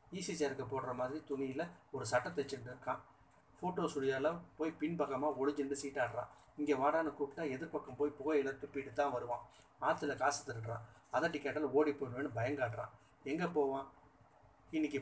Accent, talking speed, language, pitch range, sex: native, 140 wpm, Tamil, 125-145 Hz, male